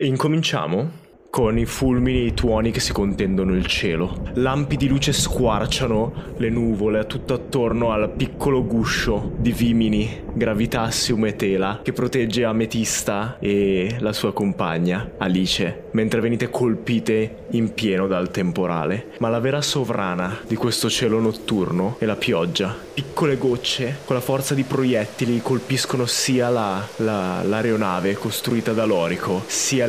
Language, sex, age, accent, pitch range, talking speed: Italian, male, 20-39, native, 110-130 Hz, 145 wpm